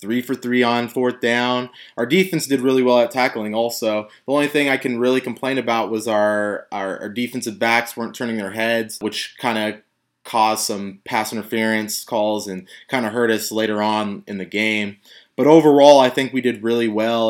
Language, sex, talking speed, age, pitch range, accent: English, male, 200 wpm, 20-39, 110-125 Hz, American